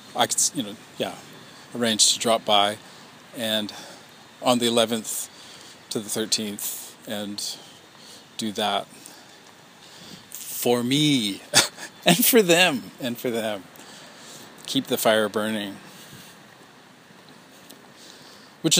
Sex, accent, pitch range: male, American, 110-150 Hz